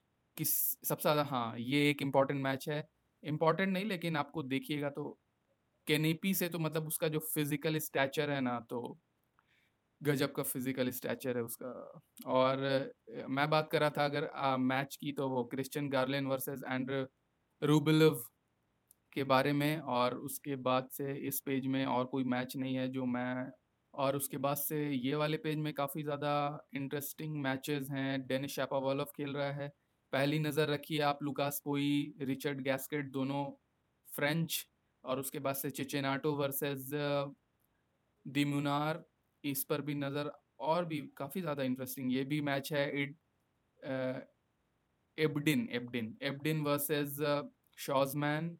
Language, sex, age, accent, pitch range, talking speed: Hindi, male, 20-39, native, 135-150 Hz, 145 wpm